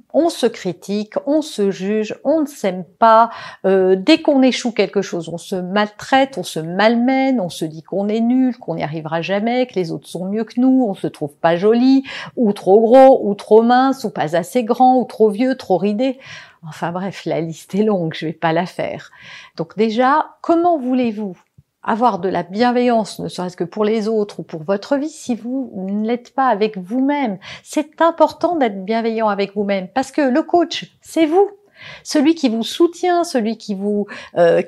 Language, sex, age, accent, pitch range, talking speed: French, female, 50-69, French, 200-275 Hz, 195 wpm